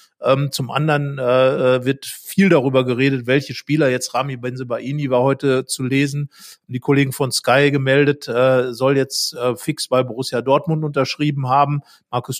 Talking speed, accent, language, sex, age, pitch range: 160 wpm, German, German, male, 50-69, 130-145 Hz